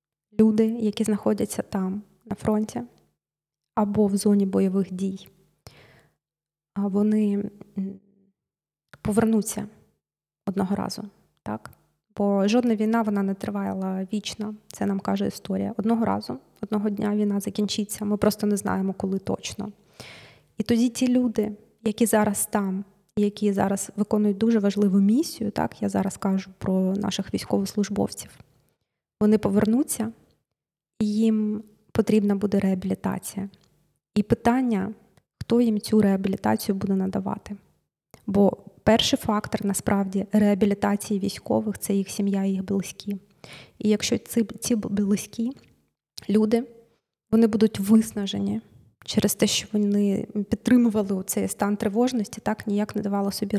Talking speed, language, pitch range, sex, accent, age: 120 wpm, Ukrainian, 195-215 Hz, female, native, 20-39